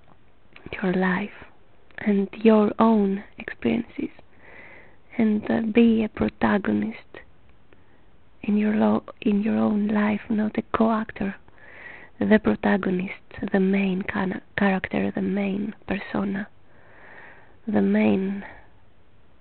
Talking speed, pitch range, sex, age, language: 100 wpm, 185-215 Hz, female, 20-39, English